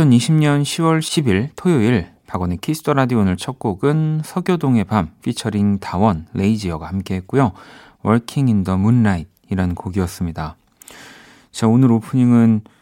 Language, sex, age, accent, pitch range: Korean, male, 40-59, native, 95-125 Hz